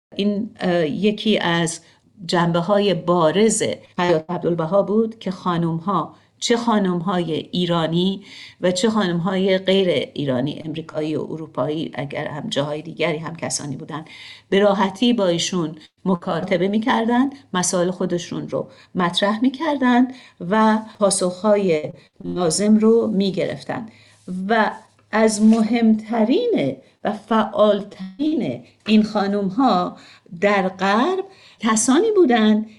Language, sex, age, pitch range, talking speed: Persian, female, 50-69, 165-220 Hz, 110 wpm